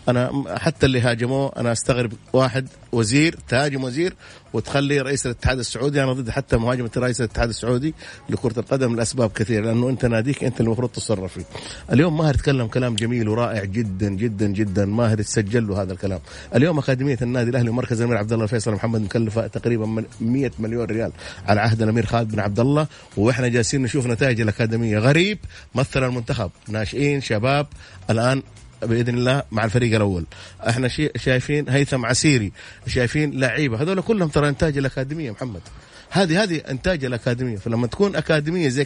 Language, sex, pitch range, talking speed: English, male, 115-135 Hz, 160 wpm